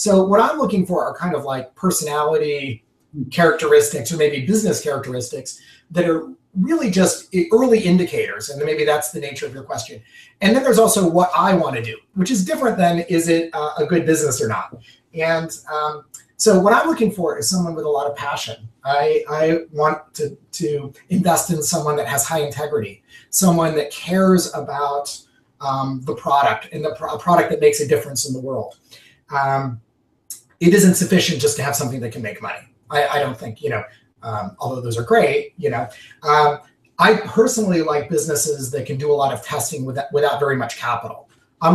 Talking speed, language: 200 wpm, English